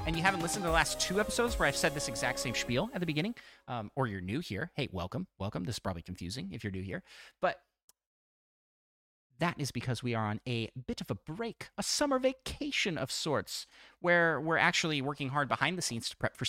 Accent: American